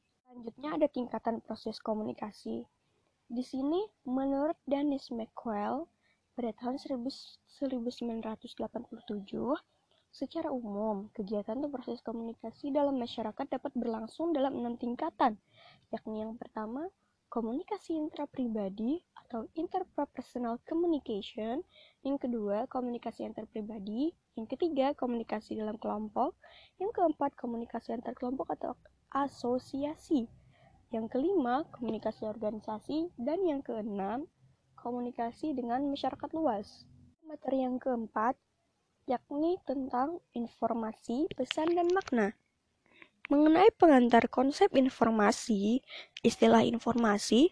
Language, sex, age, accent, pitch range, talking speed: Indonesian, female, 20-39, native, 230-295 Hz, 100 wpm